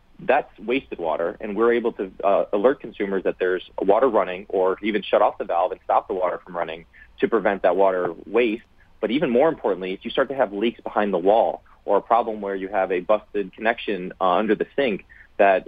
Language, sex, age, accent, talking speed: English, male, 30-49, American, 220 wpm